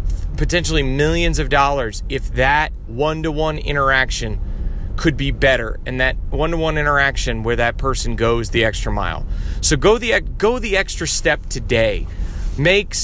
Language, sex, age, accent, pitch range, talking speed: English, male, 30-49, American, 105-150 Hz, 160 wpm